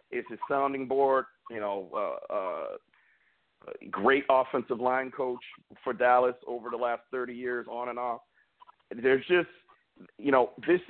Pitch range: 125-185 Hz